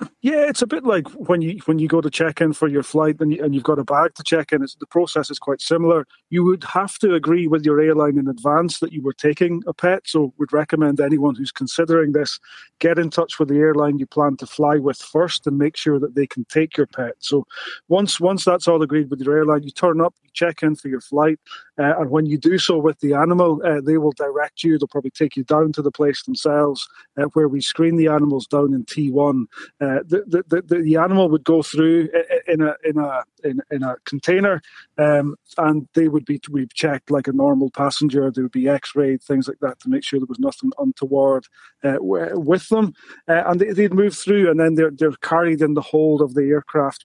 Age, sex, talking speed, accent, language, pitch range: 30-49, male, 240 wpm, British, English, 145-170 Hz